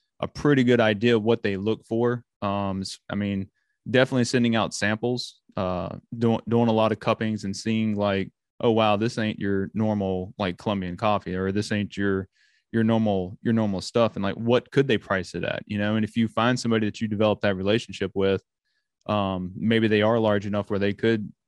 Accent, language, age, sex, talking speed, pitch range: American, English, 20-39, male, 205 wpm, 100-115 Hz